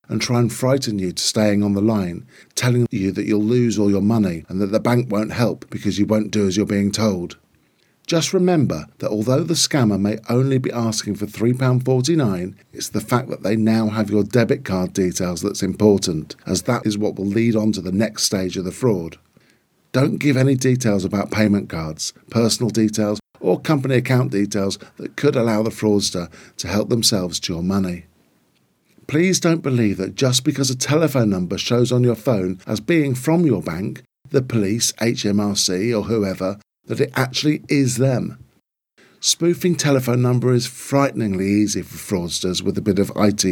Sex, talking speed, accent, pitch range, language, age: male, 190 wpm, British, 100-125 Hz, English, 50-69